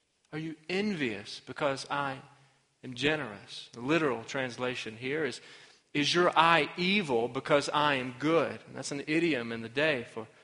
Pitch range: 130-170 Hz